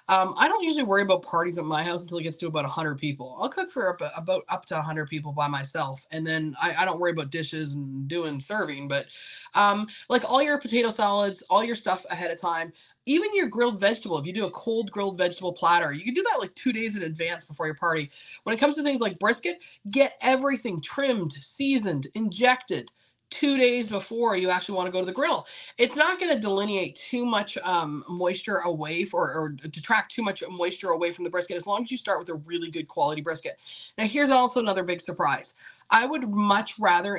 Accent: American